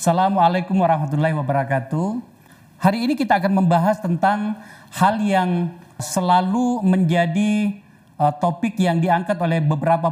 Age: 40-59